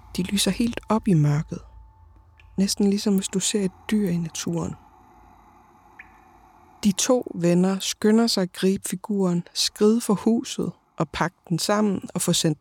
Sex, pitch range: female, 150-205 Hz